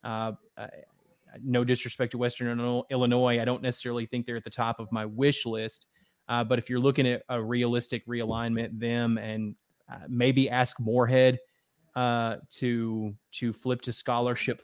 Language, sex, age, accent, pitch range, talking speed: English, male, 20-39, American, 120-135 Hz, 165 wpm